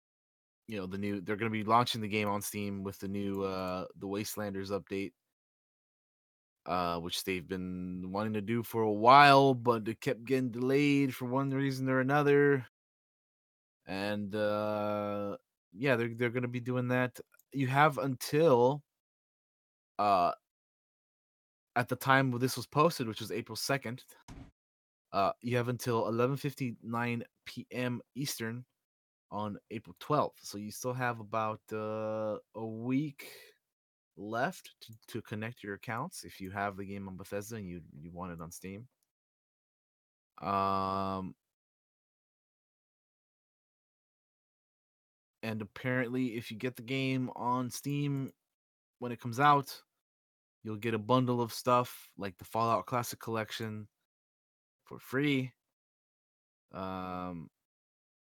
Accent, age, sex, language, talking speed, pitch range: American, 20-39, male, English, 135 wpm, 100-125 Hz